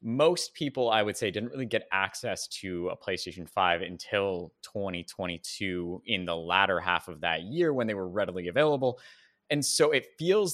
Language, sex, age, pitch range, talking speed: English, male, 20-39, 105-155 Hz, 175 wpm